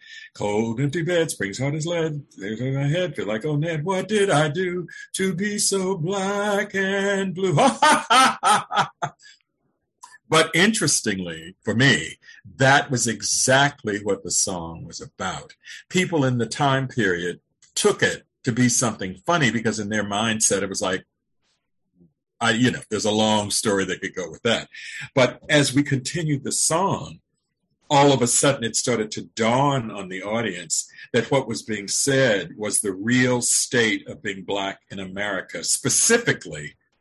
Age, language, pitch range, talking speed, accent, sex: 50-69, English, 110-165 Hz, 160 wpm, American, male